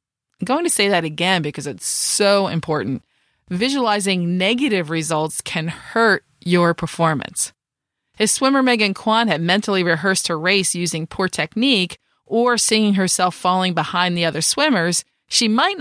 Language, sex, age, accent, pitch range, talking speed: English, female, 30-49, American, 175-240 Hz, 150 wpm